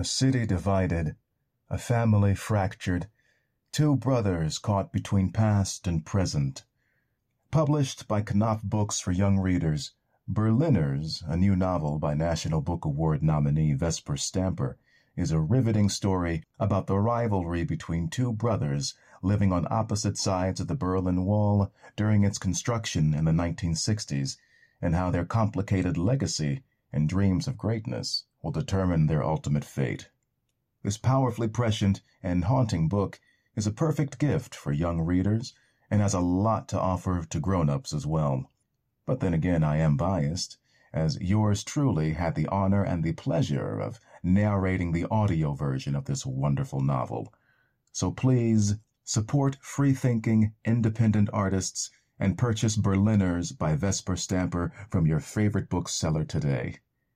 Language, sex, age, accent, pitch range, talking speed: English, male, 40-59, American, 85-110 Hz, 140 wpm